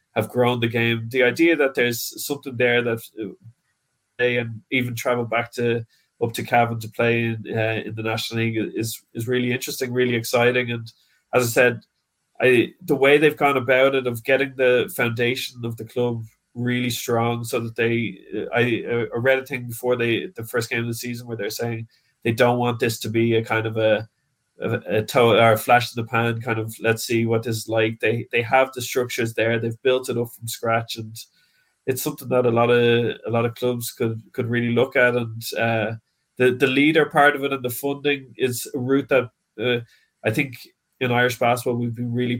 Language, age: English, 20-39